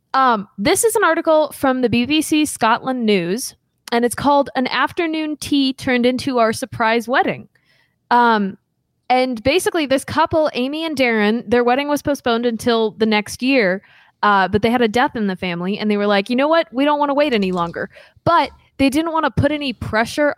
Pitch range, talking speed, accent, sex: 210-285 Hz, 200 wpm, American, female